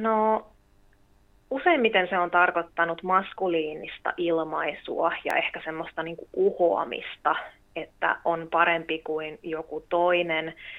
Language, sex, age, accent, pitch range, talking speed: English, female, 20-39, Finnish, 160-175 Hz, 95 wpm